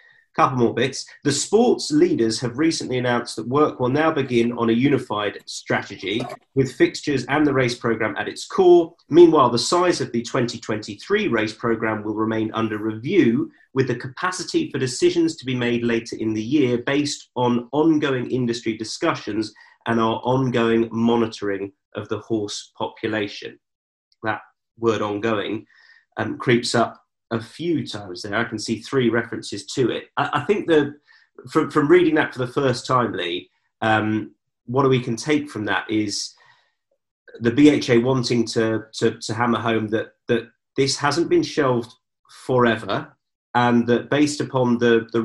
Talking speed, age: 165 wpm, 30-49